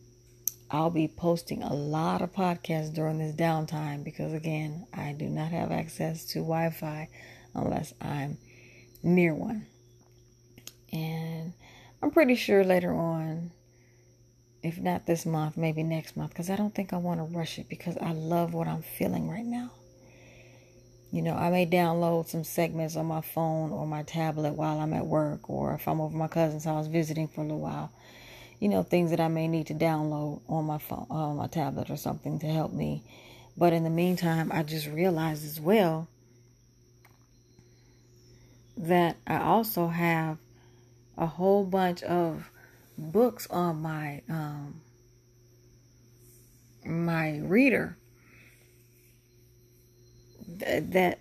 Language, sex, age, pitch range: English, female, 30-49, 120-170 Hz